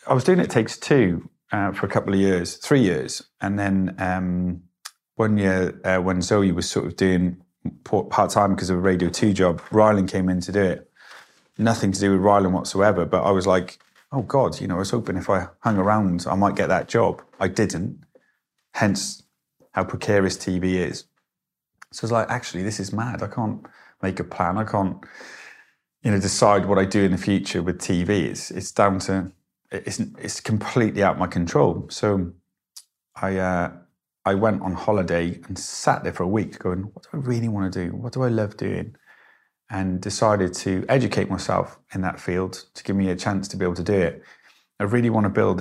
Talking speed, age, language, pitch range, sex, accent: 210 wpm, 30-49, English, 90-105 Hz, male, British